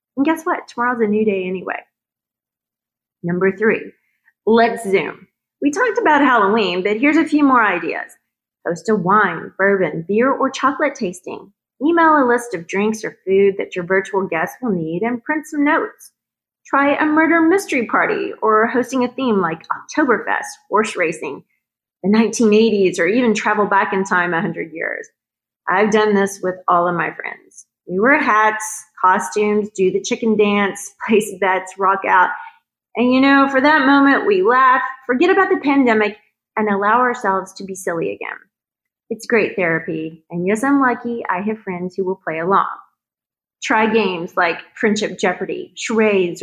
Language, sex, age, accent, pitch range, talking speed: English, female, 30-49, American, 195-295 Hz, 165 wpm